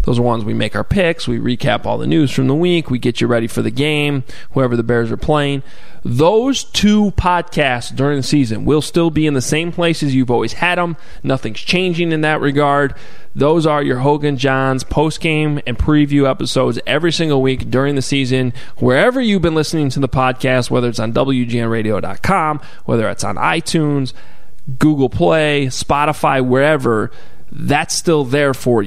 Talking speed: 180 wpm